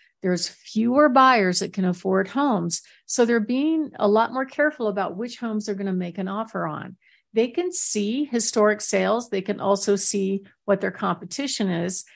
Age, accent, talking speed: 50-69, American, 185 wpm